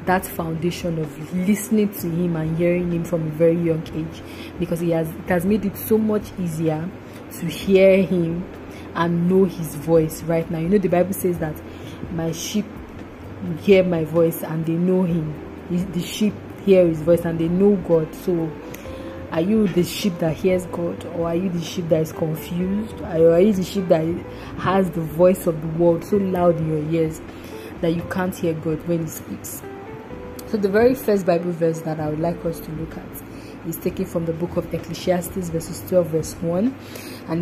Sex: female